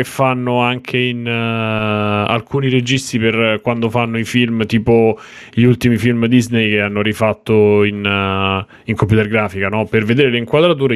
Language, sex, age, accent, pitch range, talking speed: Italian, male, 20-39, native, 110-140 Hz, 140 wpm